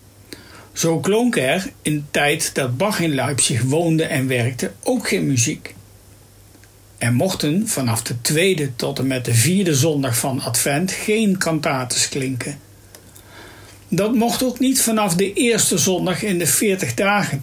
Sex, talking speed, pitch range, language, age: male, 150 wpm, 115-180 Hz, Dutch, 60-79